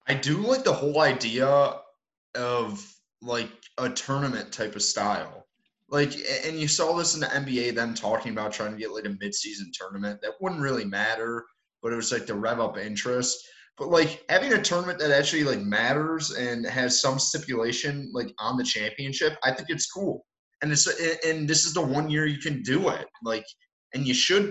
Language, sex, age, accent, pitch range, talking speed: English, male, 20-39, American, 125-155 Hz, 195 wpm